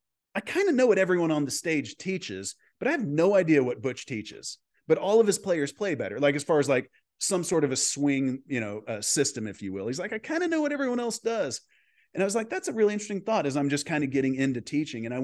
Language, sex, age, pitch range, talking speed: English, male, 30-49, 120-155 Hz, 280 wpm